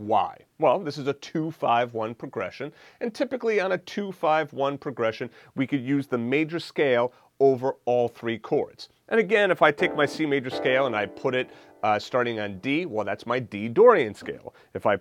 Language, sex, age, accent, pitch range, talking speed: English, male, 30-49, American, 115-155 Hz, 190 wpm